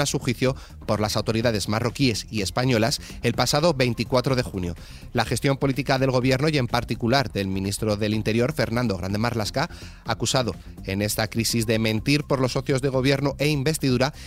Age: 30-49